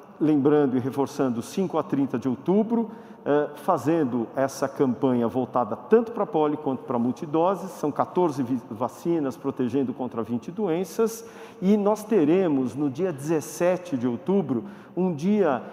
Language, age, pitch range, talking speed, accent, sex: Portuguese, 50-69, 135-185 Hz, 135 wpm, Brazilian, male